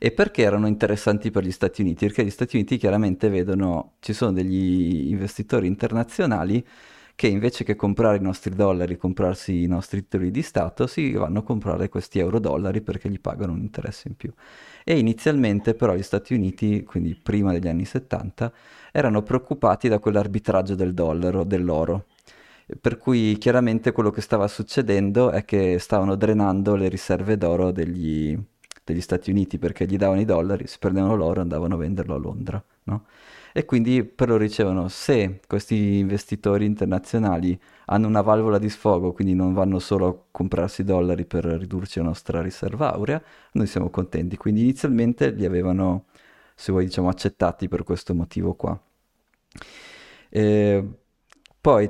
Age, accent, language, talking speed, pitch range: 30-49, native, Italian, 160 wpm, 90-110 Hz